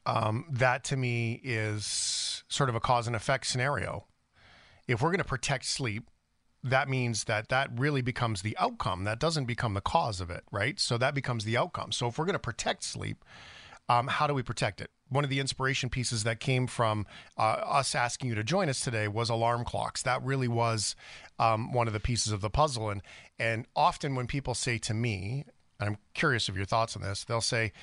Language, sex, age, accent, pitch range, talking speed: English, male, 40-59, American, 105-135 Hz, 215 wpm